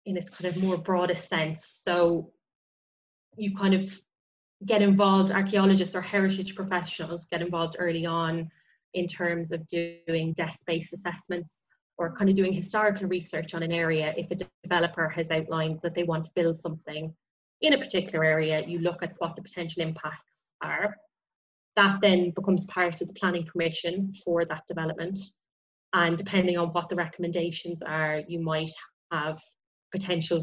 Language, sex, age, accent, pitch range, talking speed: English, female, 20-39, Irish, 165-190 Hz, 160 wpm